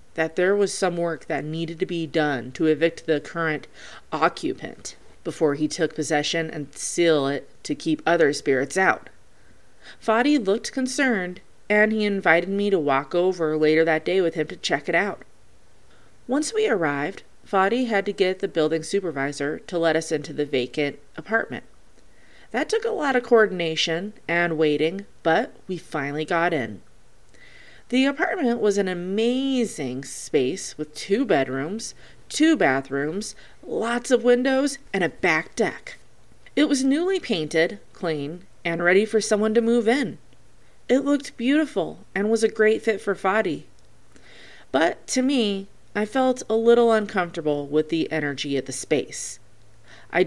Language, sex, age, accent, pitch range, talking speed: English, female, 30-49, American, 150-220 Hz, 155 wpm